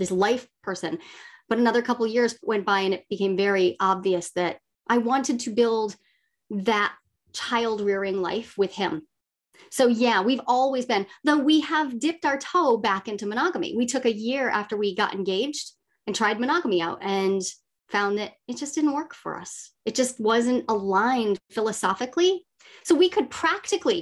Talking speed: 175 wpm